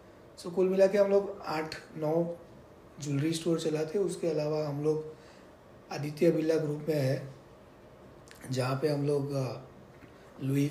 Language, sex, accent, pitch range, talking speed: Hindi, male, native, 135-155 Hz, 135 wpm